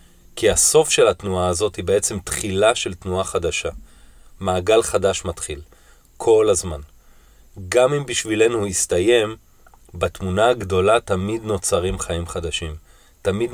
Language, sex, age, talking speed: Hebrew, male, 30-49, 125 wpm